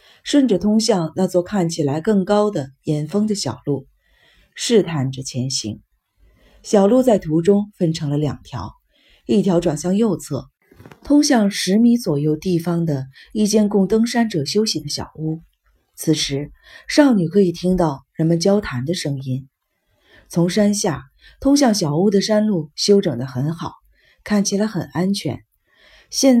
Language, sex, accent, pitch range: Chinese, female, native, 150-210 Hz